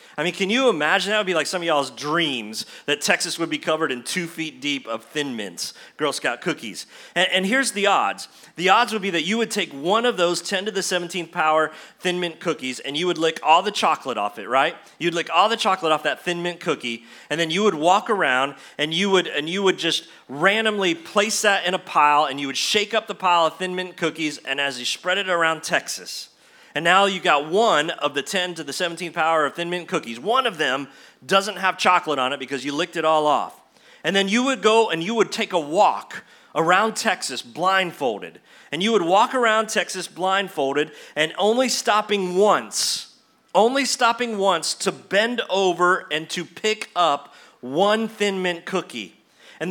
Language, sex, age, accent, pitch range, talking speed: English, male, 30-49, American, 155-205 Hz, 215 wpm